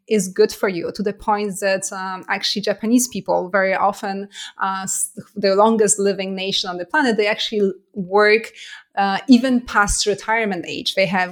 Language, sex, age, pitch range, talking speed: English, female, 30-49, 190-225 Hz, 175 wpm